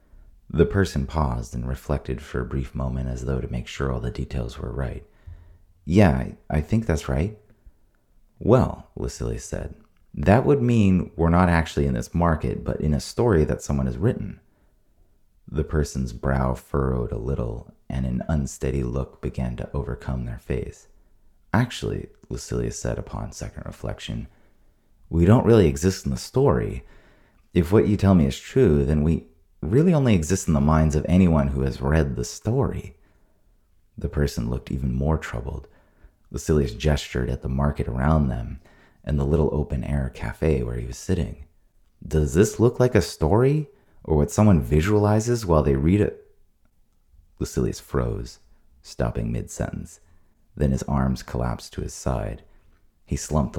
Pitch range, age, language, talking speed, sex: 65-95 Hz, 30-49, English, 160 wpm, male